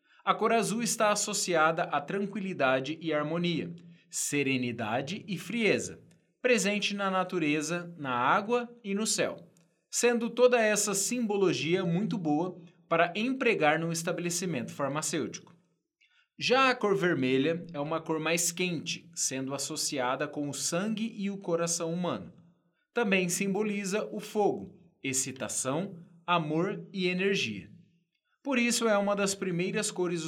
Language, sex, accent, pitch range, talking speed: Portuguese, male, Brazilian, 160-205 Hz, 125 wpm